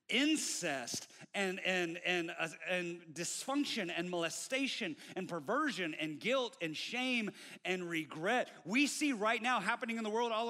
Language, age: English, 30-49